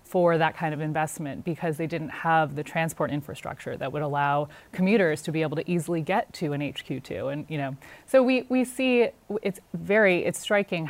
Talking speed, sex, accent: 200 wpm, female, American